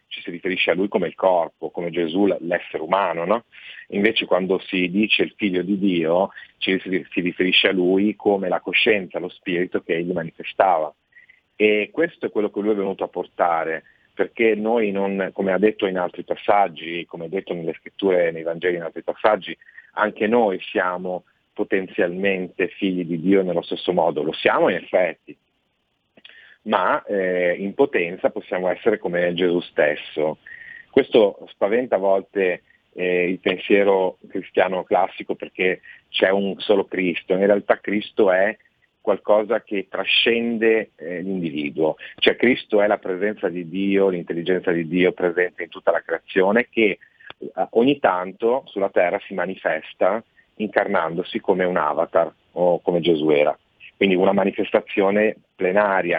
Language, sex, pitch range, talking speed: Italian, male, 90-100 Hz, 155 wpm